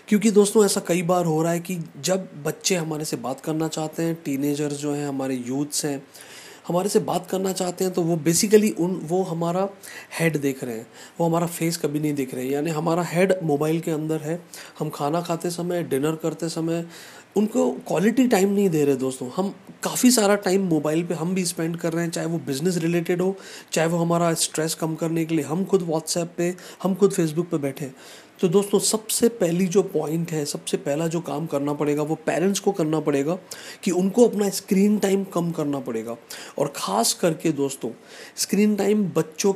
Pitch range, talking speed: 150-190 Hz, 205 wpm